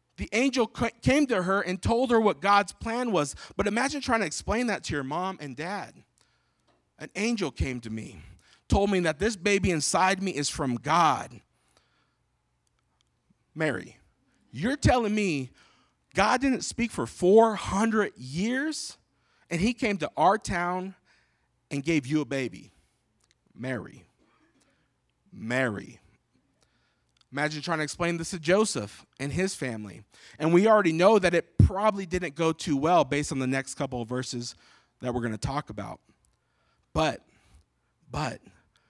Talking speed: 150 wpm